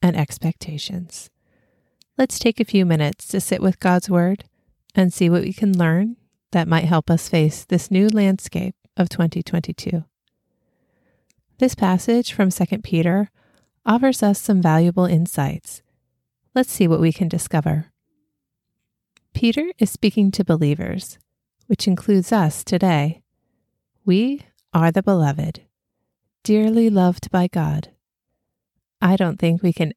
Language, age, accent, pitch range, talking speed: English, 30-49, American, 160-195 Hz, 130 wpm